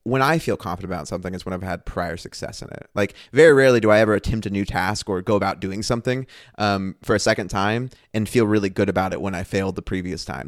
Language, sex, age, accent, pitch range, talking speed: English, male, 20-39, American, 95-120 Hz, 265 wpm